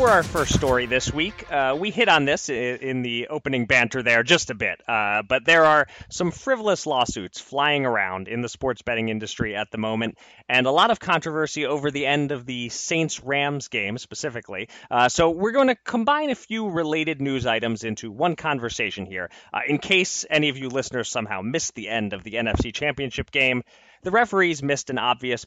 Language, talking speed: English, 200 wpm